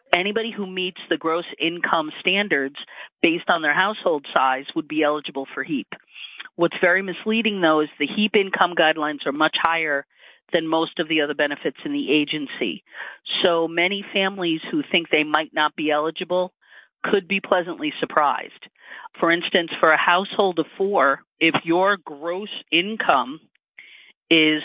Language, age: English, 40-59